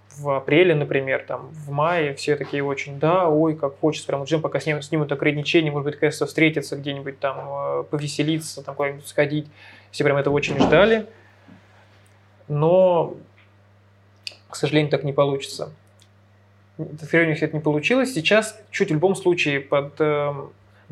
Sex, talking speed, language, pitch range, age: male, 150 wpm, Russian, 140-160 Hz, 20-39